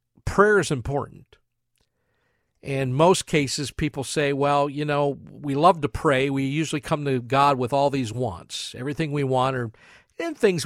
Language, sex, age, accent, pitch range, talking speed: English, male, 50-69, American, 120-170 Hz, 170 wpm